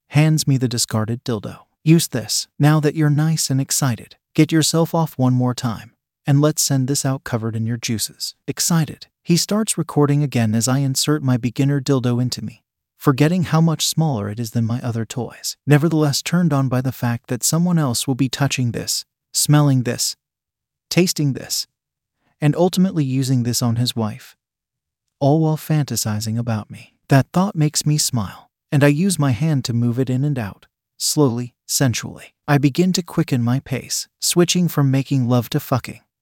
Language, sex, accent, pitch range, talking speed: English, male, American, 120-150 Hz, 180 wpm